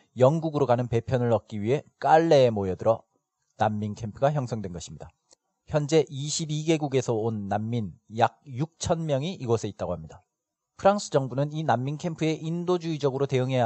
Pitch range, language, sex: 110-155 Hz, Korean, male